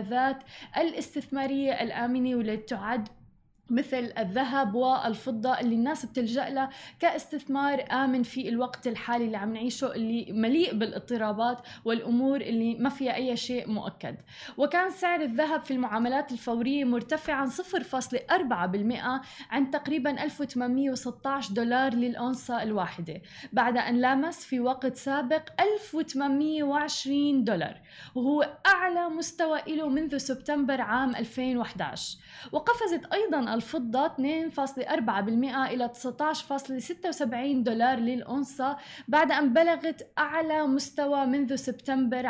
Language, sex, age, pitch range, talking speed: Arabic, female, 20-39, 240-290 Hz, 105 wpm